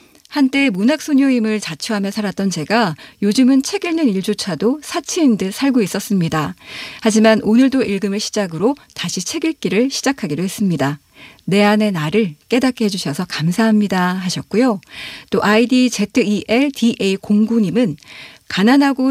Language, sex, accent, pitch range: Korean, female, native, 180-245 Hz